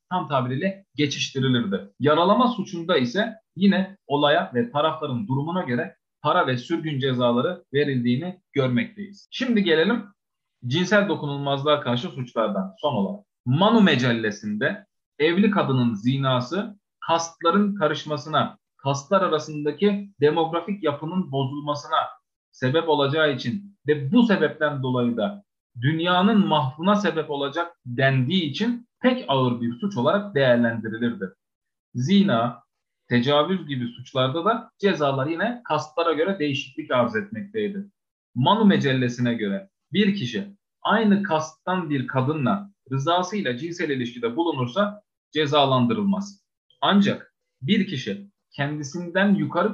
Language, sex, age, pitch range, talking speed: Turkish, male, 40-59, 130-200 Hz, 105 wpm